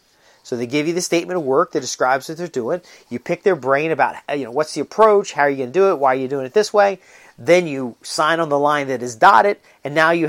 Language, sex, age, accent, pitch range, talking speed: English, male, 40-59, American, 125-170 Hz, 275 wpm